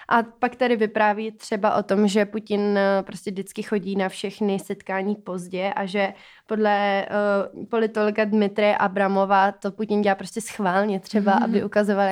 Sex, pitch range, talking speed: female, 195-225 Hz, 155 wpm